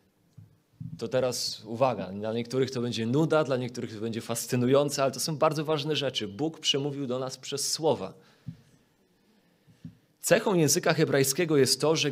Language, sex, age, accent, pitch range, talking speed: Polish, male, 30-49, native, 120-150 Hz, 155 wpm